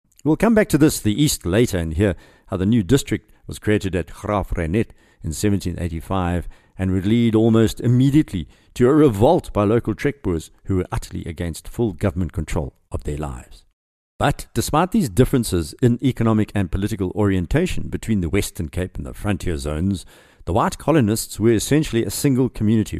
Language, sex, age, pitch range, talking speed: English, male, 50-69, 90-125 Hz, 175 wpm